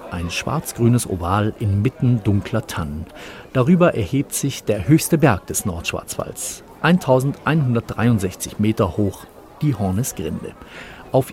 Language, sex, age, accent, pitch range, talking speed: German, male, 40-59, German, 105-145 Hz, 105 wpm